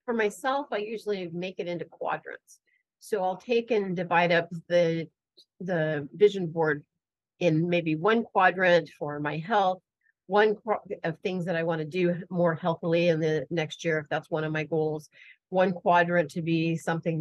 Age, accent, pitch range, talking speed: 40-59, American, 155-185 Hz, 180 wpm